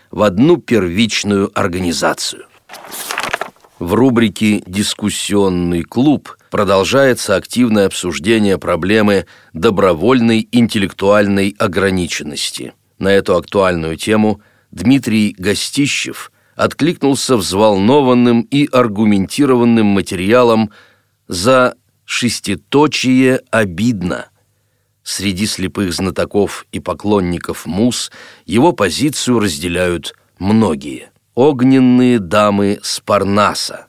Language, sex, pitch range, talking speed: Russian, male, 100-125 Hz, 75 wpm